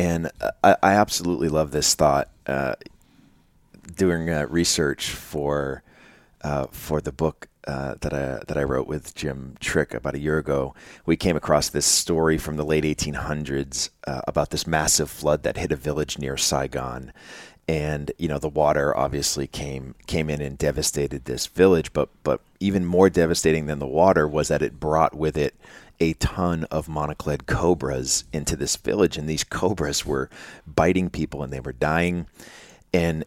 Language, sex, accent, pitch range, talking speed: English, male, American, 70-80 Hz, 170 wpm